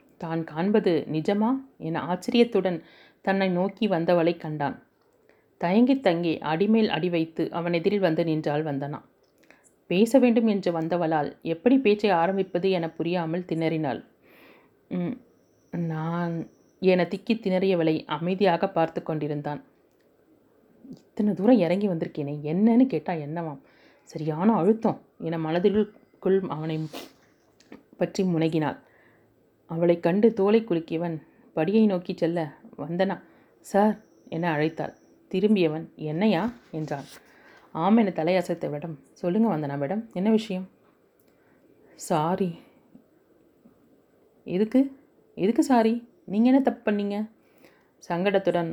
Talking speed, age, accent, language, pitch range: 95 wpm, 30-49, native, Tamil, 160-210 Hz